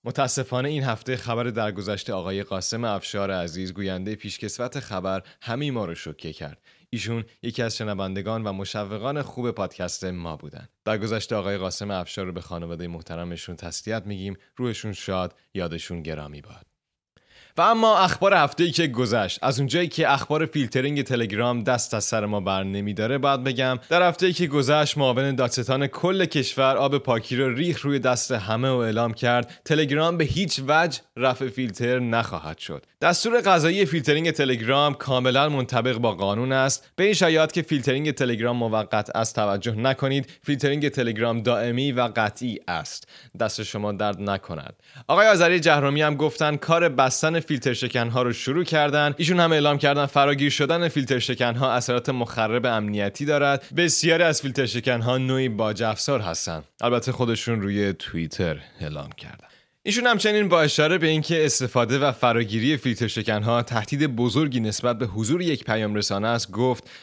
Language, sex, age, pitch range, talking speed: Persian, male, 30-49, 110-145 Hz, 160 wpm